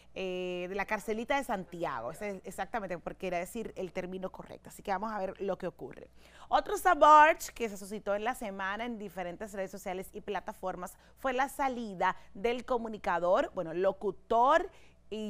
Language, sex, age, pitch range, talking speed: Spanish, female, 30-49, 190-235 Hz, 175 wpm